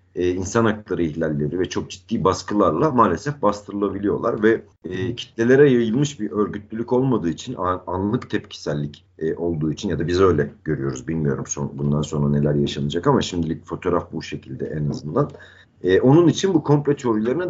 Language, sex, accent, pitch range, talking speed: Turkish, male, native, 90-120 Hz, 145 wpm